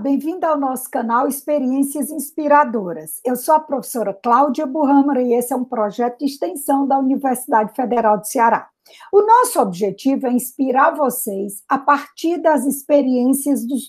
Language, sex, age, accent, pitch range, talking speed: Portuguese, female, 50-69, Brazilian, 245-310 Hz, 150 wpm